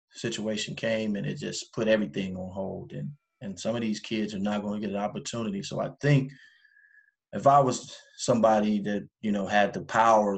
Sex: male